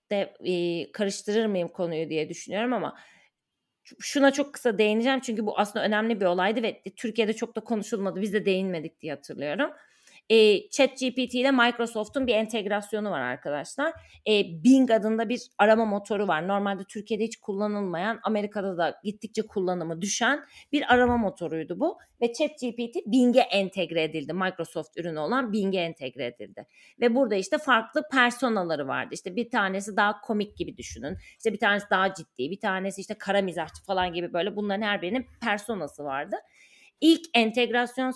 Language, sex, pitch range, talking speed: Turkish, female, 190-240 Hz, 155 wpm